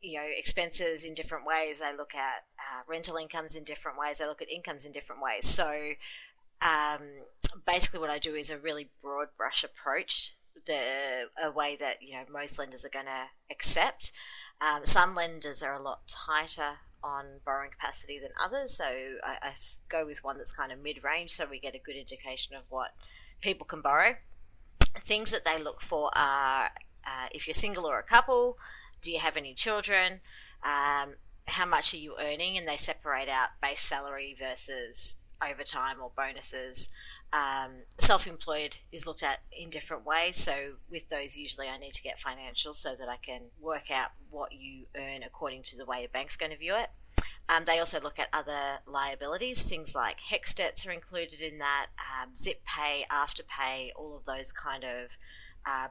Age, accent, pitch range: 30-49, Australian, 135-160 Hz